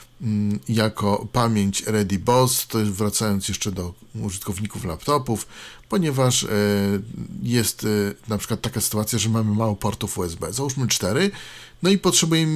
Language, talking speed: Polish, 120 wpm